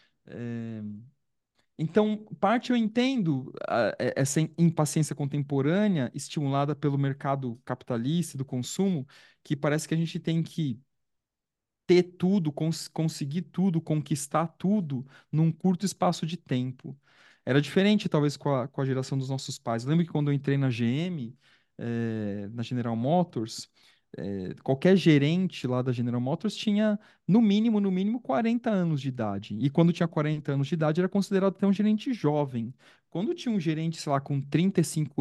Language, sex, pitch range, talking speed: Portuguese, male, 130-175 Hz, 160 wpm